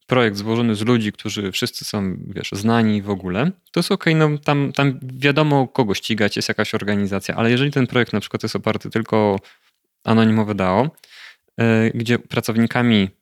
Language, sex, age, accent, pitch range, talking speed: Polish, male, 20-39, native, 105-125 Hz, 175 wpm